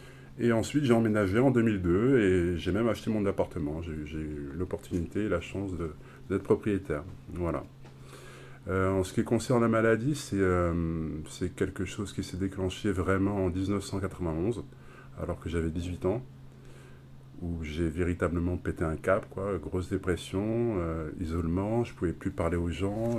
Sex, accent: male, French